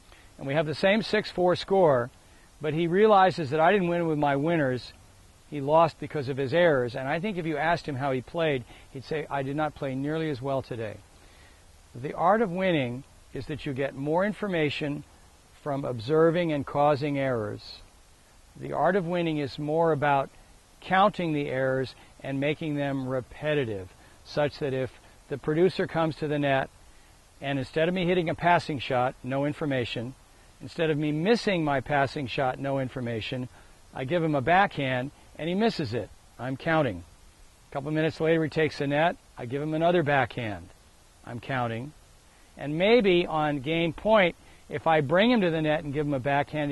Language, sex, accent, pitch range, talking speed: English, male, American, 125-160 Hz, 185 wpm